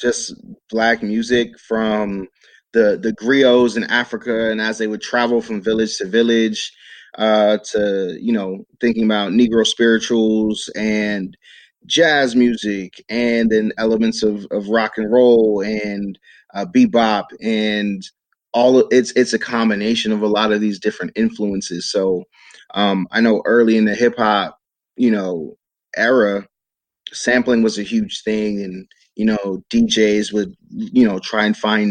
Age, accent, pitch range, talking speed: 30-49, American, 105-115 Hz, 150 wpm